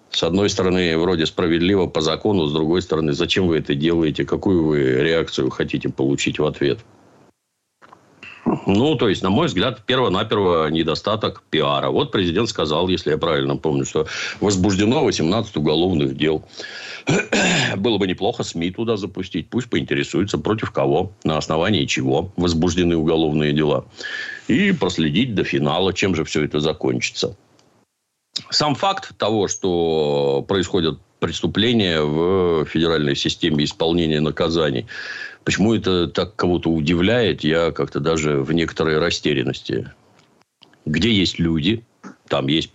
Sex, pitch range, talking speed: male, 80-100 Hz, 130 wpm